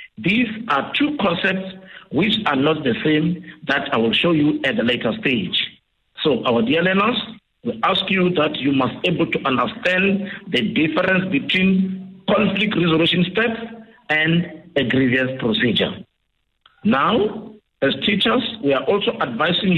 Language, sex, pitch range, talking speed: English, male, 160-215 Hz, 150 wpm